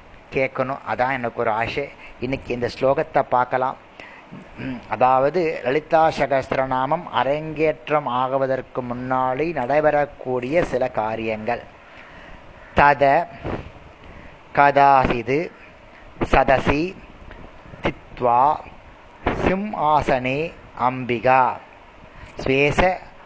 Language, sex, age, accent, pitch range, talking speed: Tamil, male, 30-49, native, 120-140 Hz, 60 wpm